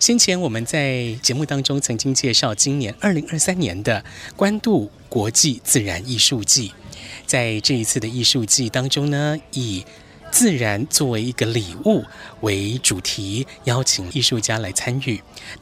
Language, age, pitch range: Chinese, 10-29, 110-140 Hz